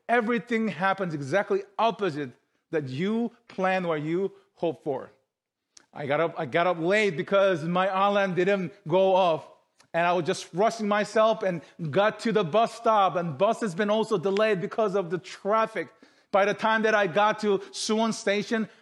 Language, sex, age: English, male, 40-59